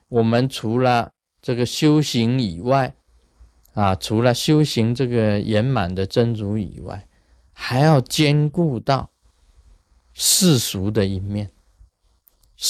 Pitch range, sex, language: 90-125 Hz, male, Chinese